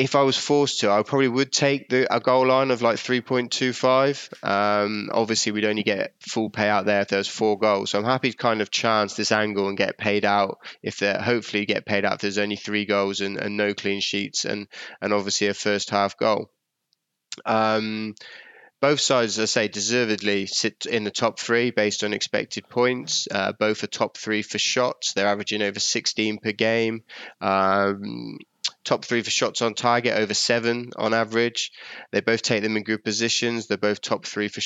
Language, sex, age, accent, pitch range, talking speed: English, male, 20-39, British, 100-115 Hz, 200 wpm